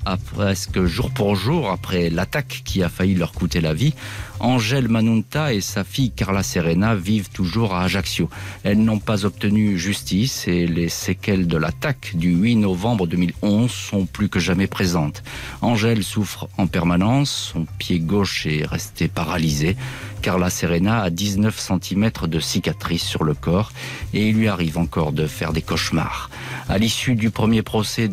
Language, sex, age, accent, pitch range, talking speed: French, male, 50-69, French, 90-110 Hz, 165 wpm